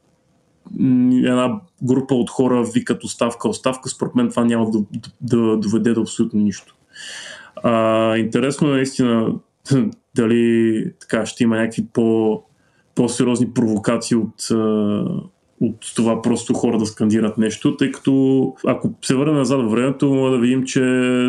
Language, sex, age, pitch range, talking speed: Bulgarian, male, 20-39, 115-135 Hz, 140 wpm